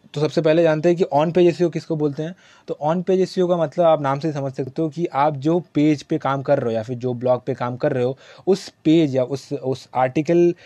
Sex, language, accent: male, Hindi, native